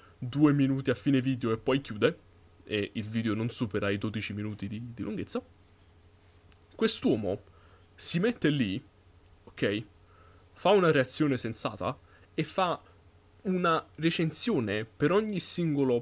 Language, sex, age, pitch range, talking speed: Italian, male, 20-39, 105-145 Hz, 130 wpm